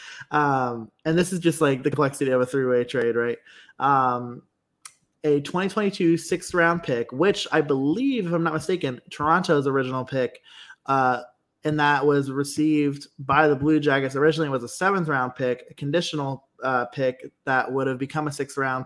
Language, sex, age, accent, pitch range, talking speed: English, male, 20-39, American, 130-155 Hz, 170 wpm